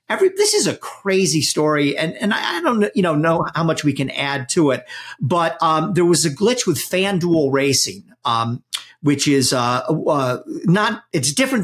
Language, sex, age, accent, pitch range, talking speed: English, male, 50-69, American, 140-190 Hz, 190 wpm